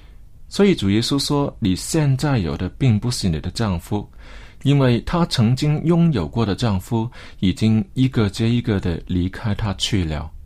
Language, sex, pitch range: Chinese, male, 95-135 Hz